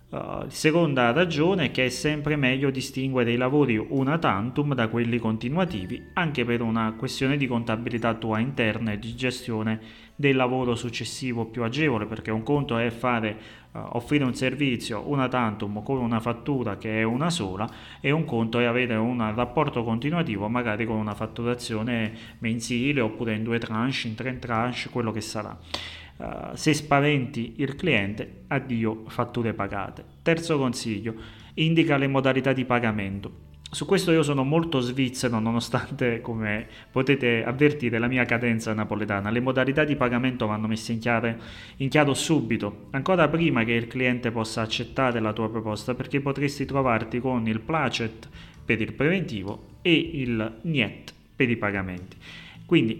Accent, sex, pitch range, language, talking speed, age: native, male, 110-135 Hz, Italian, 160 wpm, 30-49